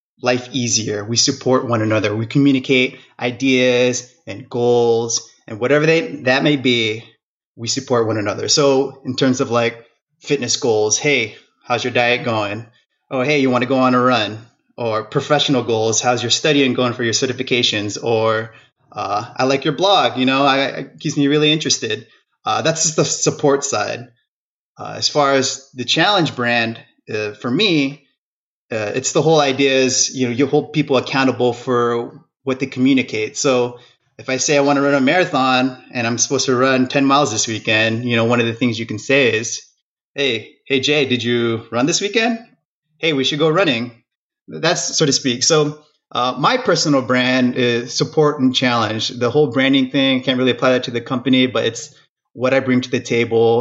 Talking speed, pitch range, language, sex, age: 195 wpm, 120-140 Hz, English, male, 30-49